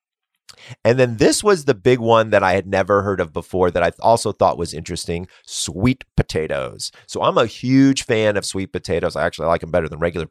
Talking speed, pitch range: 215 wpm, 95-130 Hz